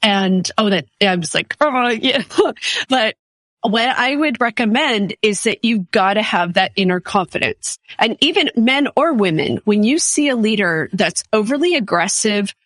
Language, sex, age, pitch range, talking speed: English, female, 30-49, 195-235 Hz, 160 wpm